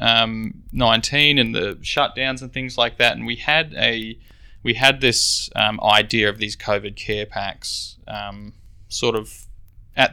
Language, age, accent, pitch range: English, 20-39, Australian, 105-120 Hz